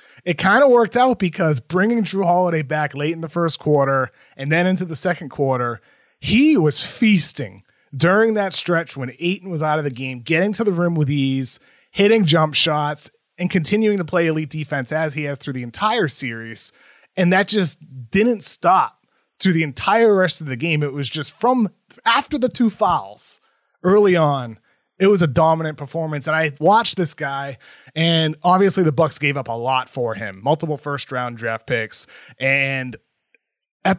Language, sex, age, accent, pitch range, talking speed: English, male, 30-49, American, 140-195 Hz, 185 wpm